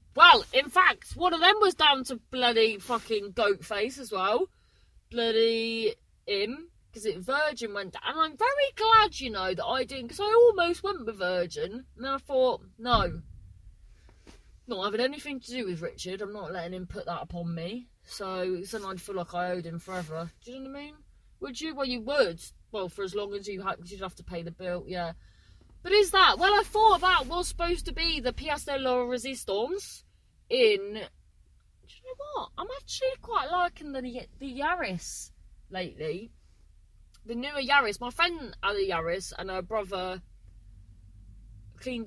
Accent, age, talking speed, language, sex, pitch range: British, 30-49, 185 wpm, English, female, 170-275 Hz